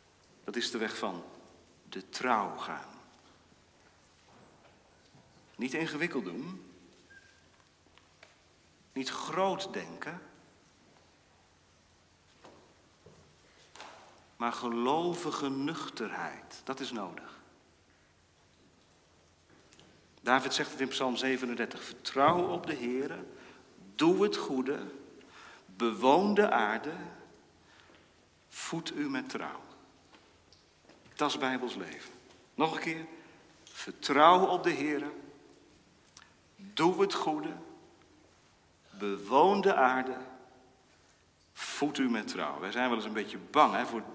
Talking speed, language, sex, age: 95 wpm, Dutch, male, 50-69